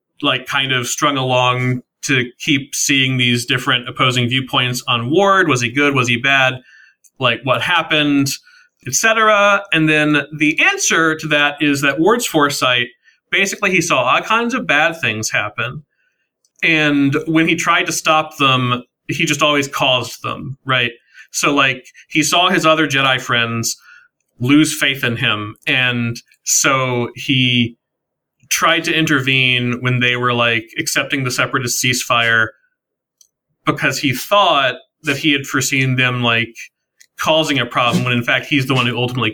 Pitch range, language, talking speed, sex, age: 125-155 Hz, English, 155 wpm, male, 30-49